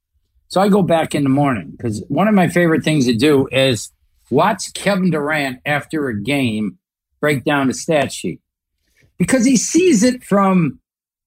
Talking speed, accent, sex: 170 wpm, American, male